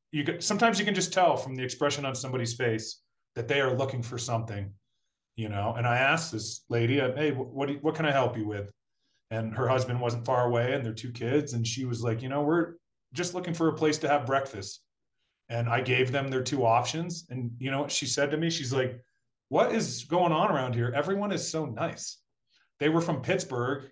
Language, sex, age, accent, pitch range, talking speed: English, male, 30-49, American, 120-150 Hz, 220 wpm